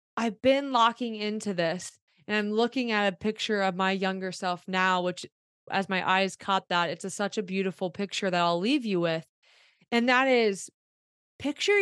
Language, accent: English, American